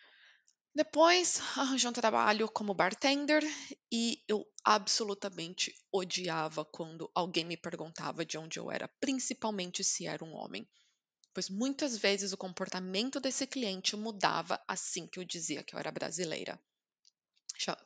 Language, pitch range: Portuguese, 175-220 Hz